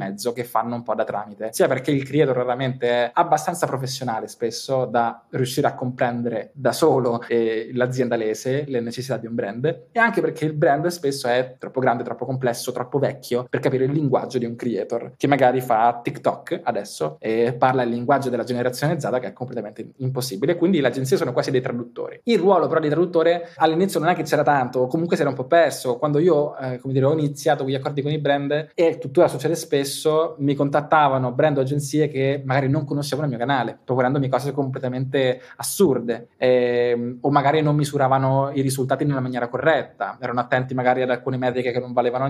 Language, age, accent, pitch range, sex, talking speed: Italian, 20-39, native, 125-150 Hz, male, 200 wpm